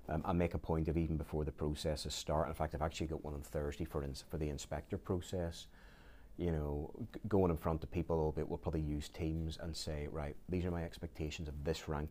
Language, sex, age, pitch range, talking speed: English, male, 30-49, 75-90 Hz, 240 wpm